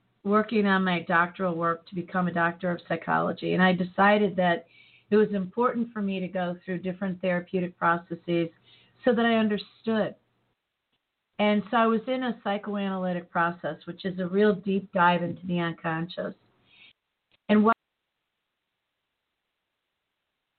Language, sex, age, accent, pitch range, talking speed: English, female, 40-59, American, 170-195 Hz, 145 wpm